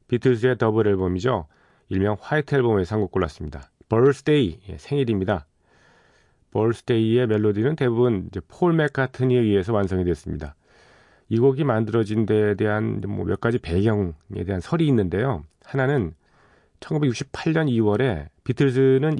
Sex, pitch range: male, 100-135 Hz